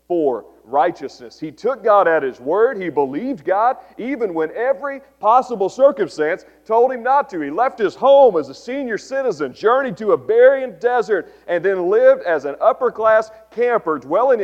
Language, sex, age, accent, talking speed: English, male, 40-59, American, 170 wpm